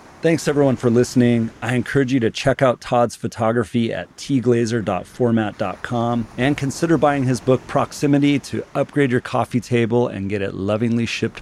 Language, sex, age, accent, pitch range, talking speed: English, male, 40-59, American, 110-135 Hz, 160 wpm